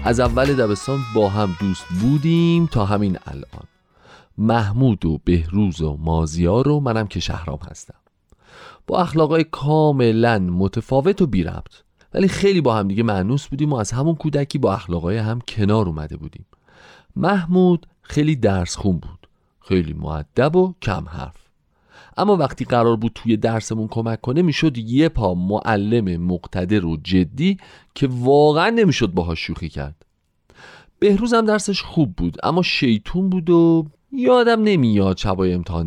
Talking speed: 145 wpm